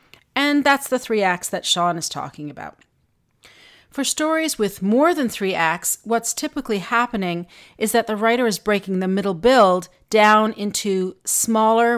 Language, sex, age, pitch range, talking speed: English, female, 40-59, 185-250 Hz, 160 wpm